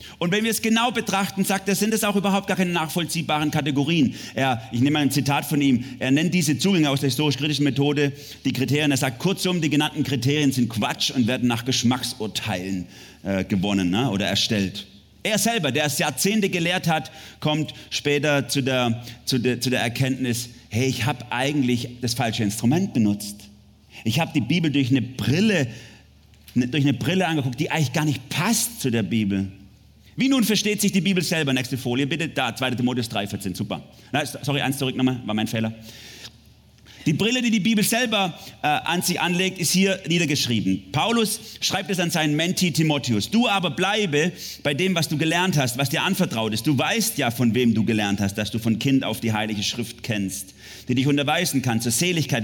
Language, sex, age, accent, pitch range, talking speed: German, male, 40-59, German, 115-170 Hz, 195 wpm